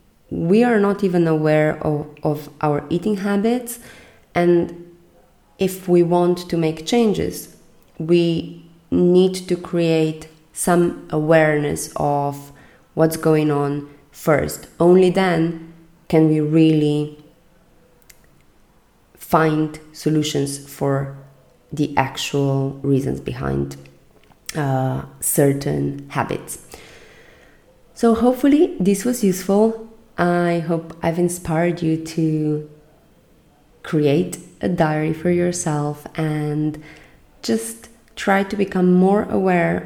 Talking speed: 100 wpm